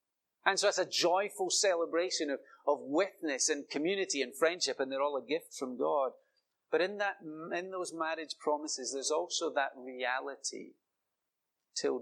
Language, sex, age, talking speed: English, male, 30-49, 160 wpm